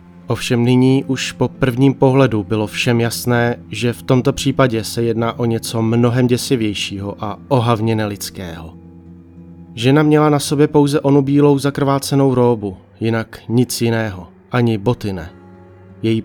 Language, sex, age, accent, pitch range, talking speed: Czech, male, 30-49, native, 110-130 Hz, 140 wpm